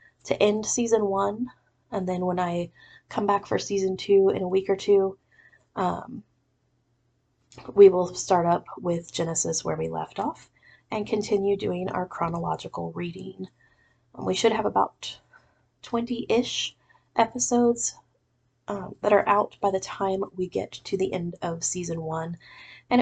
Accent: American